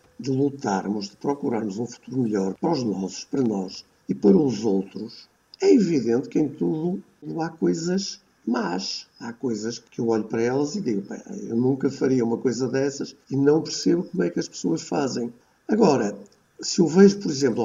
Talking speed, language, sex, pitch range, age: 185 wpm, Portuguese, male, 125-165 Hz, 60-79